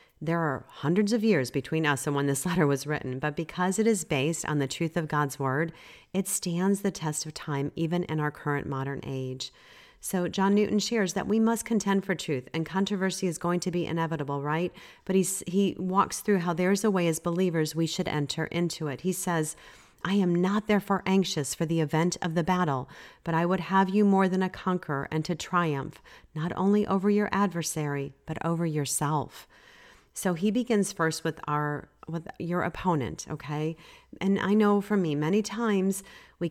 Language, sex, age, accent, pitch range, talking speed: English, female, 40-59, American, 155-200 Hz, 195 wpm